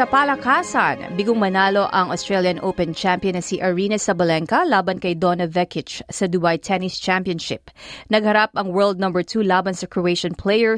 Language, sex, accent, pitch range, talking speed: Filipino, female, native, 180-230 Hz, 160 wpm